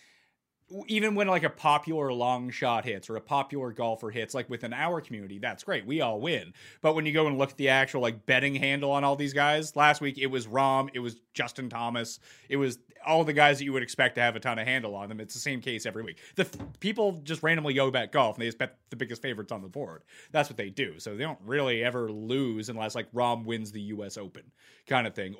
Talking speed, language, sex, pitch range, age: 250 wpm, English, male, 115-145 Hz, 30-49